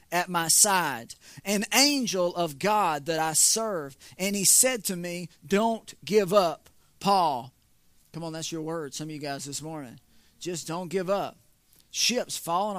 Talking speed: 170 wpm